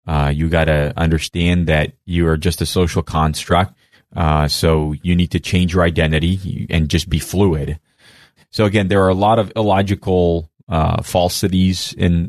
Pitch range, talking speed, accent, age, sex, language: 85-110 Hz, 170 wpm, American, 30-49, male, English